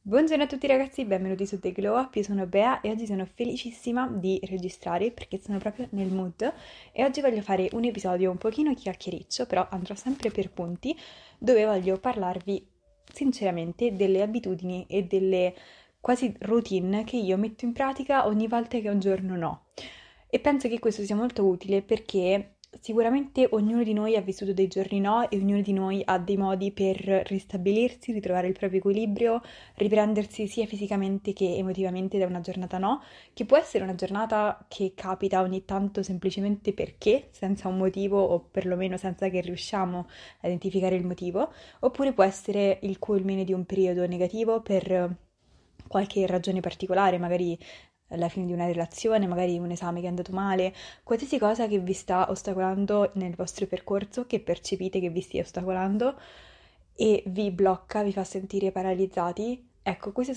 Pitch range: 185-220 Hz